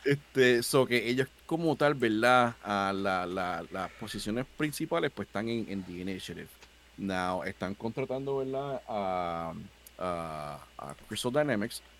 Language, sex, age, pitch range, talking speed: English, male, 30-49, 90-115 Hz, 155 wpm